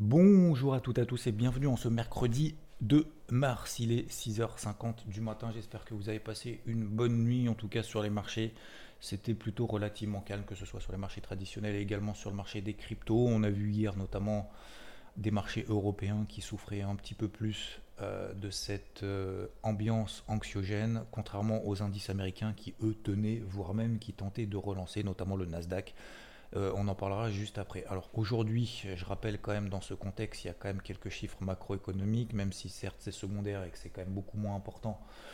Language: French